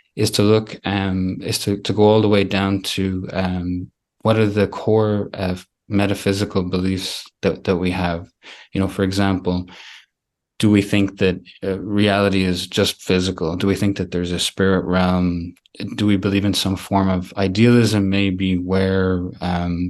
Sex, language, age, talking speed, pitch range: male, English, 20-39, 170 wpm, 95-105 Hz